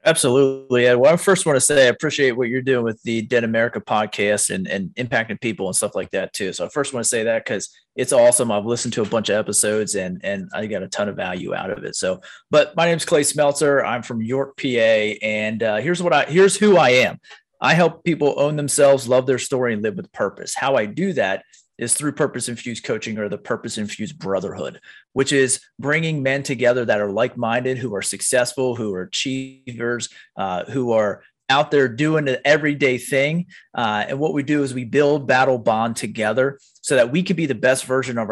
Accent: American